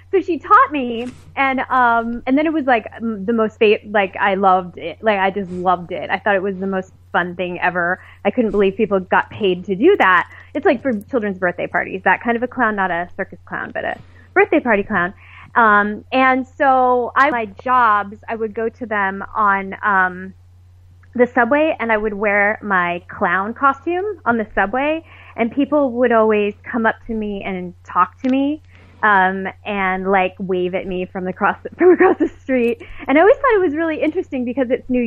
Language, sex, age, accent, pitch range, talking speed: English, female, 20-39, American, 200-290 Hz, 205 wpm